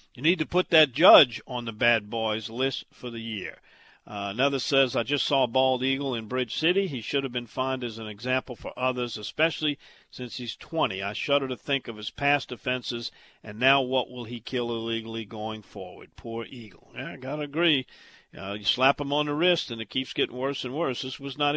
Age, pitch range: 50-69, 115-145 Hz